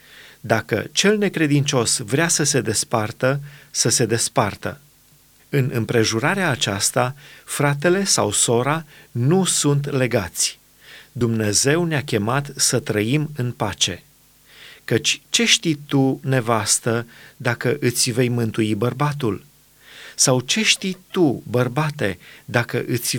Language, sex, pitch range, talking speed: Romanian, male, 115-145 Hz, 110 wpm